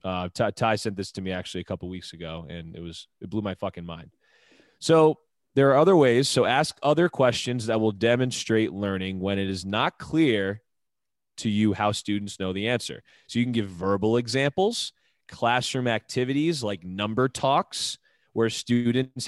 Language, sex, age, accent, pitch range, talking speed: English, male, 30-49, American, 105-135 Hz, 180 wpm